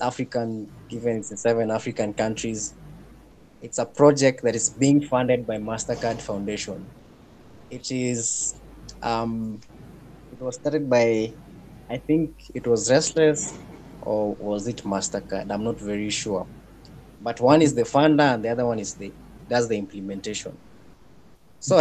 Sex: male